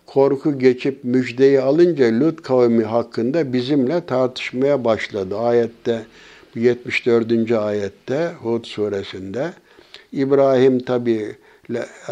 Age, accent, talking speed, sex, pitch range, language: 60-79, native, 85 wpm, male, 115-135 Hz, Turkish